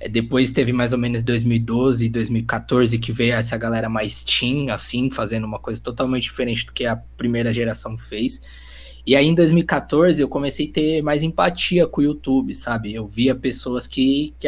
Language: Portuguese